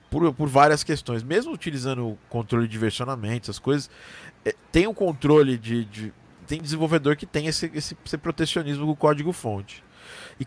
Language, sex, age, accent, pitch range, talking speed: Portuguese, male, 20-39, Brazilian, 120-160 Hz, 180 wpm